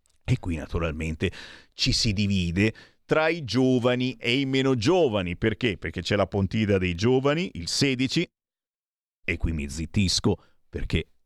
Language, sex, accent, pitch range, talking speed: Italian, male, native, 105-140 Hz, 145 wpm